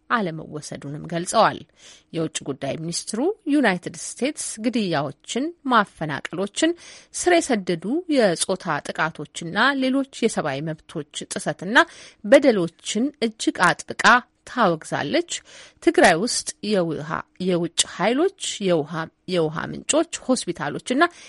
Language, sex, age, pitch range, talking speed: Amharic, female, 30-49, 165-275 Hz, 85 wpm